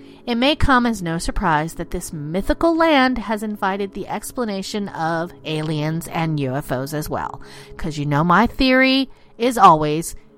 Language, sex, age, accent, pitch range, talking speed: English, female, 40-59, American, 160-250 Hz, 155 wpm